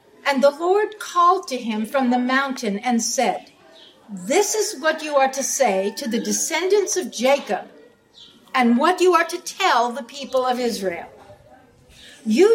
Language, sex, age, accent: English, female, 60-79, American